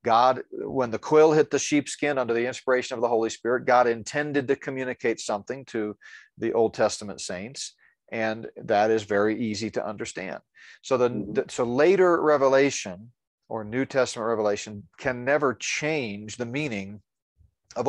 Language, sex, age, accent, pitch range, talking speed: English, male, 40-59, American, 115-145 Hz, 155 wpm